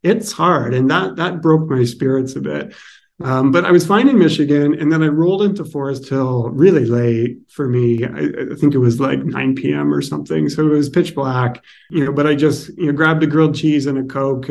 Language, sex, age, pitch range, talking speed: English, male, 30-49, 130-155 Hz, 235 wpm